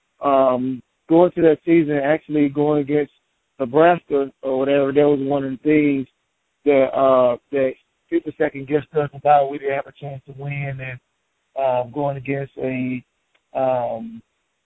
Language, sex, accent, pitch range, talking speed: English, male, American, 130-145 Hz, 155 wpm